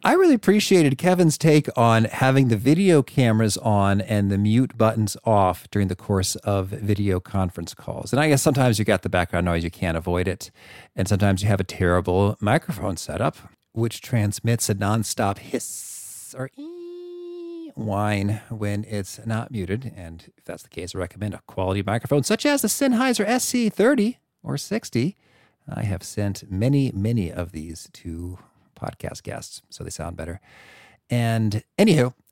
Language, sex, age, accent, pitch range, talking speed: English, male, 40-59, American, 100-140 Hz, 165 wpm